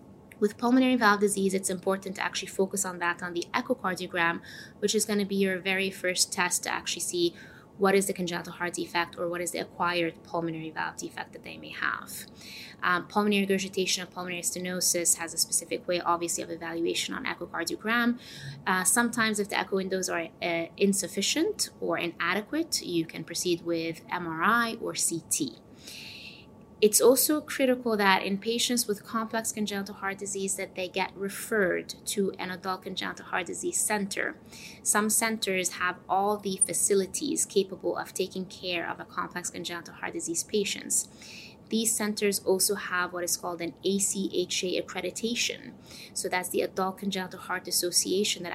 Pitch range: 175-210 Hz